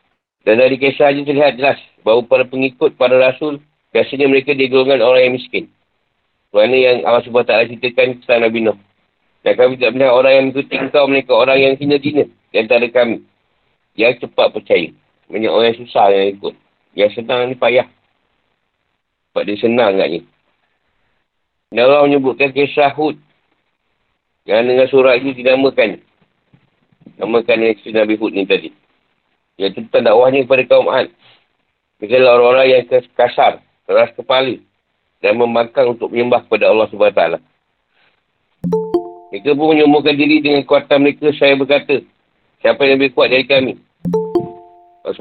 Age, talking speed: 40-59, 145 wpm